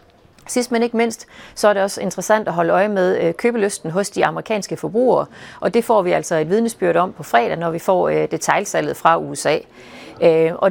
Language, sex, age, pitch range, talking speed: Danish, female, 40-59, 165-210 Hz, 195 wpm